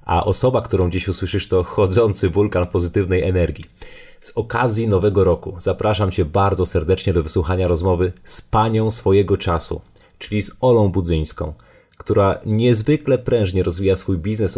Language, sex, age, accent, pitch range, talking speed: Polish, male, 30-49, native, 90-110 Hz, 145 wpm